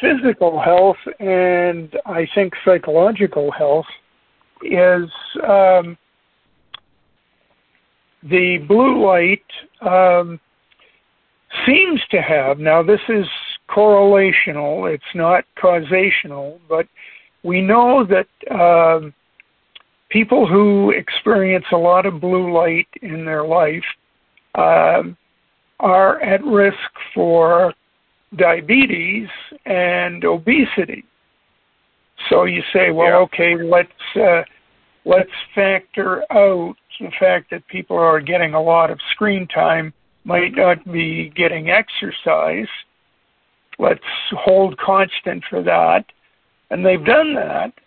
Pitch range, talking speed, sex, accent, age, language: 170-200 Hz, 105 wpm, male, American, 60-79, English